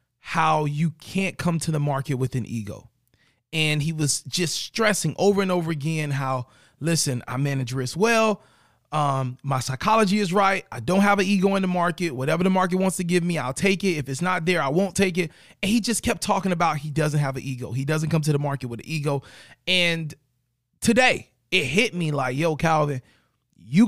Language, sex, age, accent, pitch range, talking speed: English, male, 20-39, American, 135-180 Hz, 215 wpm